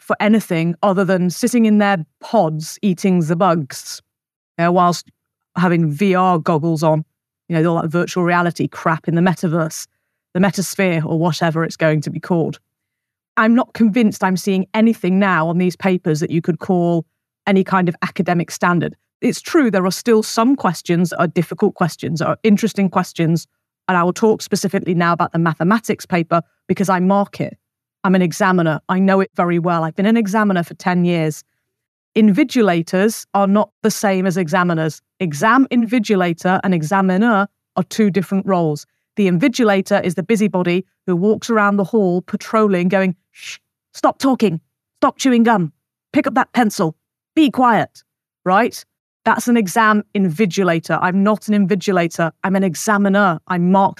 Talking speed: 165 wpm